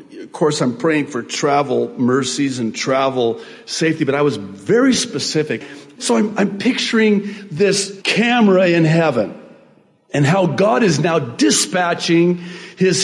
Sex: male